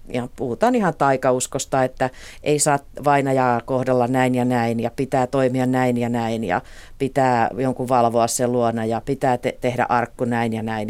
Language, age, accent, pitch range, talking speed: Finnish, 40-59, native, 125-155 Hz, 175 wpm